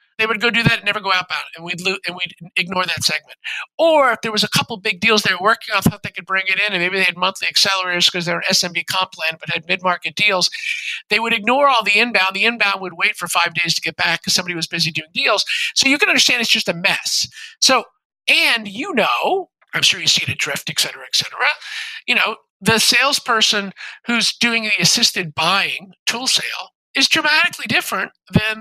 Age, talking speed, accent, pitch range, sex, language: 50-69, 235 wpm, American, 175-230 Hz, male, English